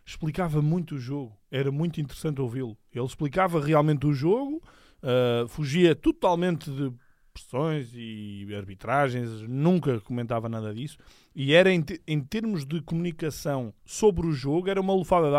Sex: male